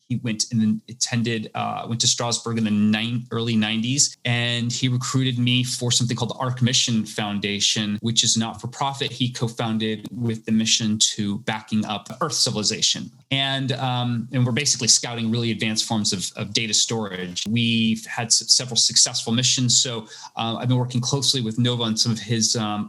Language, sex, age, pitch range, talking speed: English, male, 20-39, 110-130 Hz, 185 wpm